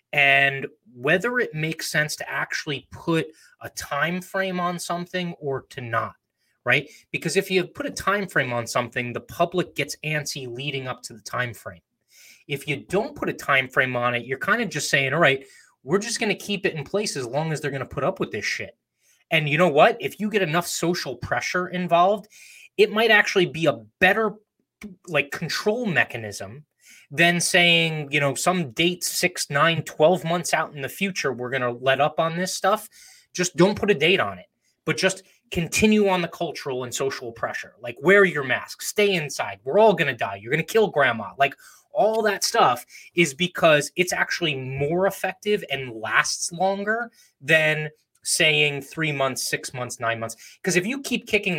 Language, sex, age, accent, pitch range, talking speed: English, male, 20-39, American, 140-190 Hz, 200 wpm